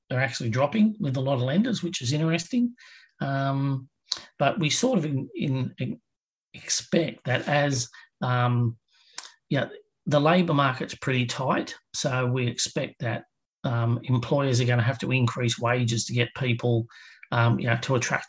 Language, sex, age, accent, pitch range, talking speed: English, male, 40-59, Australian, 120-140 Hz, 165 wpm